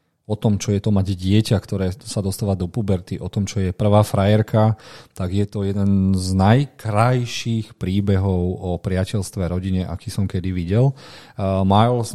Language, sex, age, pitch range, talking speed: Slovak, male, 40-59, 90-105 Hz, 170 wpm